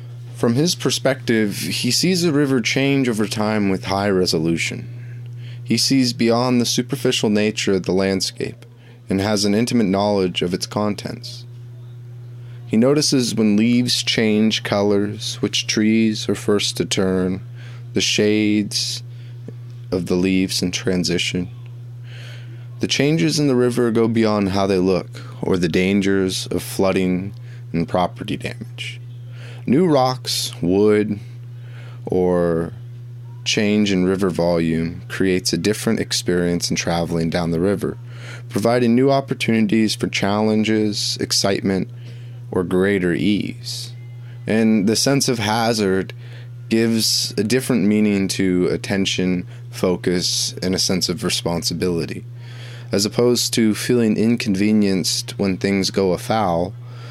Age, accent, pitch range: 20-39, American, 100-120 Hz